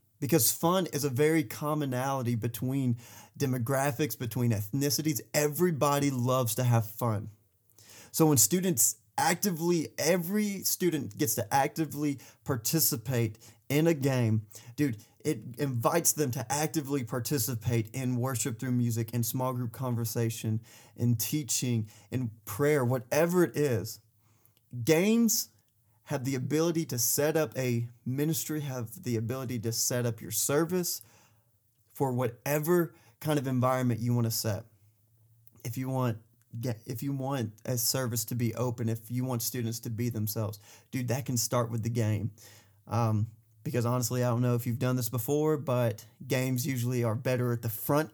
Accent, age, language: American, 30-49, English